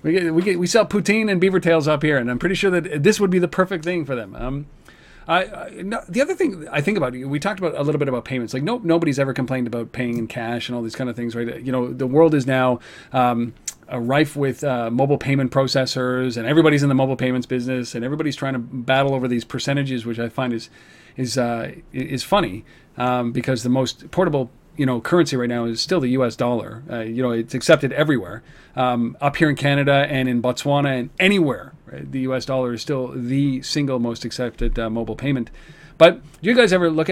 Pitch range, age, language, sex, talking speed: 130-160 Hz, 40-59, English, male, 235 wpm